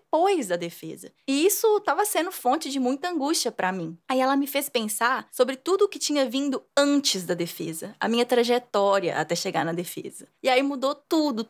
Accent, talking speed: Brazilian, 200 wpm